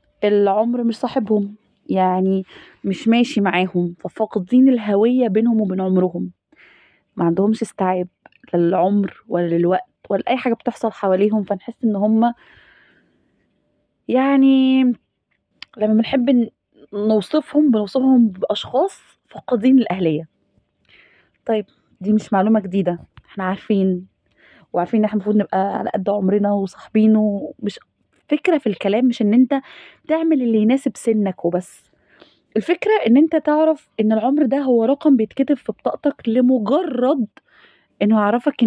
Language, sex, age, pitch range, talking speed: Arabic, female, 20-39, 200-280 Hz, 115 wpm